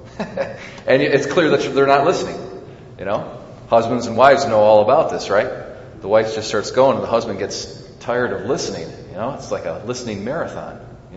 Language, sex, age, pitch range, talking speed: English, male, 40-59, 110-135 Hz, 200 wpm